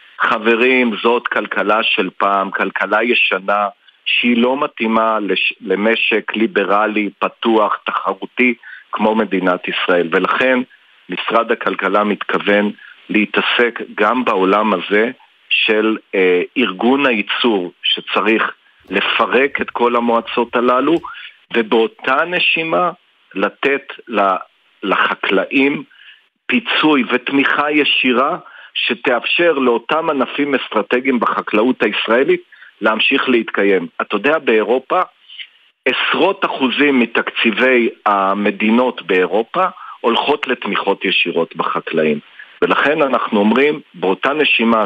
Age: 50-69